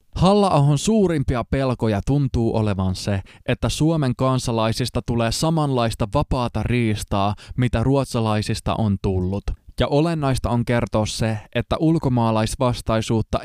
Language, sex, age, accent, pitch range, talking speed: Finnish, male, 20-39, native, 105-135 Hz, 105 wpm